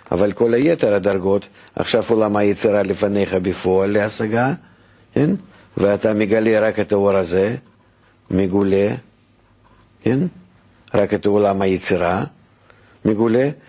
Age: 50-69